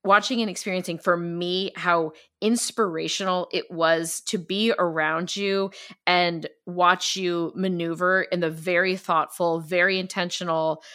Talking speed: 125 wpm